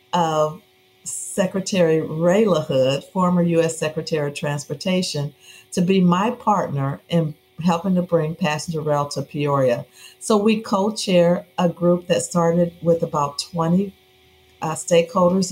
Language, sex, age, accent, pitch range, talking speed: English, female, 50-69, American, 150-180 Hz, 130 wpm